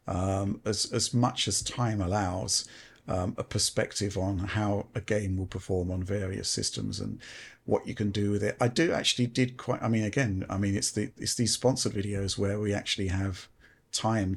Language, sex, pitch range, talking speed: English, male, 100-110 Hz, 195 wpm